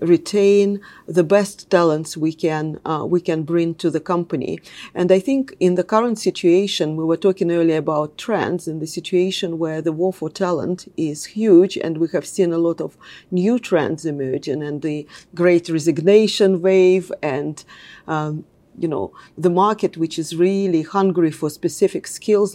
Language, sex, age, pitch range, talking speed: English, female, 40-59, 165-195 Hz, 170 wpm